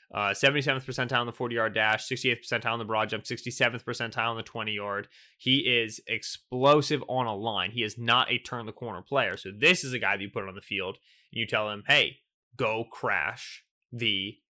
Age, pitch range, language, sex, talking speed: 20-39, 120-155 Hz, English, male, 210 wpm